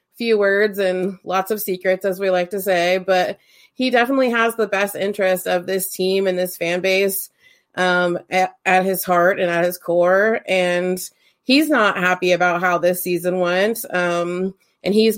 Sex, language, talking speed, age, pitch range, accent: female, English, 180 wpm, 30-49, 180-210 Hz, American